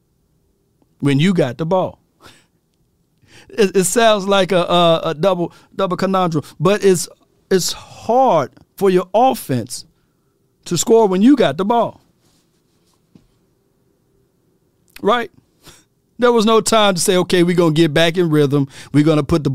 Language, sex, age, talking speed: English, male, 40-59, 150 wpm